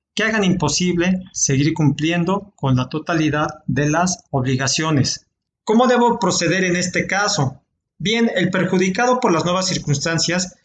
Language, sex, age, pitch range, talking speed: Spanish, male, 40-59, 145-185 Hz, 135 wpm